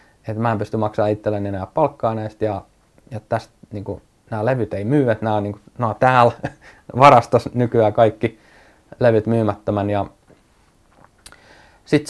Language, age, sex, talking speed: Finnish, 20-39, male, 135 wpm